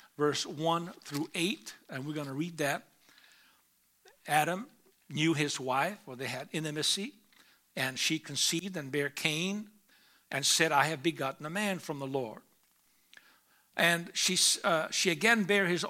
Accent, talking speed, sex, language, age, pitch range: American, 150 wpm, male, English, 60-79, 155-205 Hz